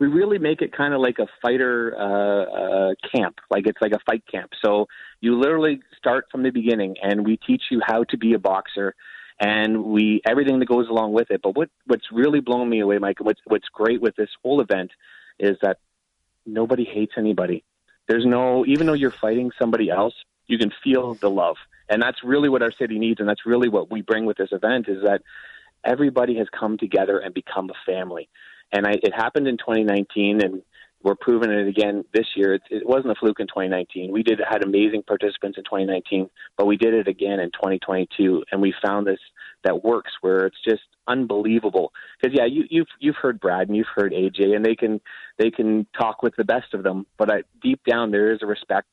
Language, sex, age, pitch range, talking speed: English, male, 30-49, 100-120 Hz, 215 wpm